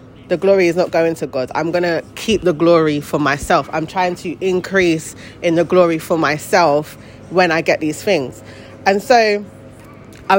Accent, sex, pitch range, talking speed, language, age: British, female, 150-200 Hz, 185 wpm, English, 20-39